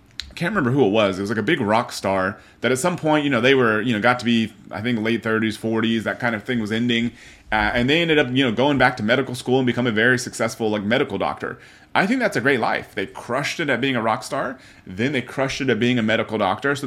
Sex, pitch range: male, 110-135 Hz